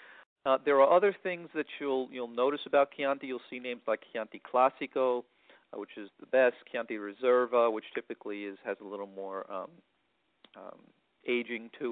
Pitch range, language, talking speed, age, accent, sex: 115-140 Hz, English, 175 wpm, 40-59, American, male